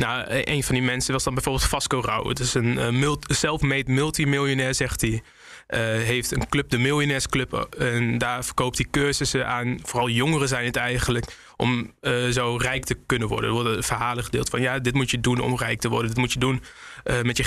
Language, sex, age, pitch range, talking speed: Dutch, male, 20-39, 120-140 Hz, 215 wpm